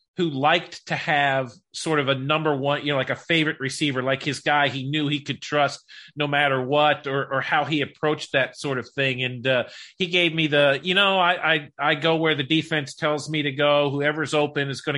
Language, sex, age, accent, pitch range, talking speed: English, male, 40-59, American, 135-160 Hz, 230 wpm